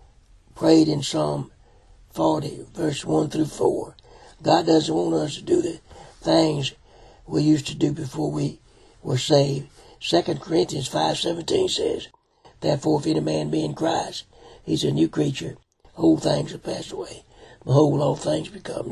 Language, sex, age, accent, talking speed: English, male, 60-79, American, 155 wpm